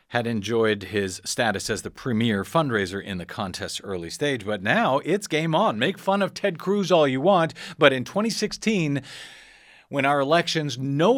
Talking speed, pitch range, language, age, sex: 175 wpm, 115-165 Hz, English, 50-69, male